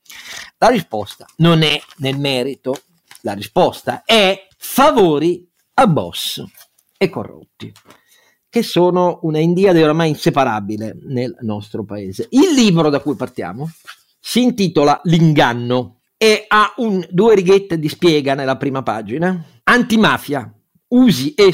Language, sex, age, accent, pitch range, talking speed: Italian, male, 50-69, native, 120-170 Hz, 125 wpm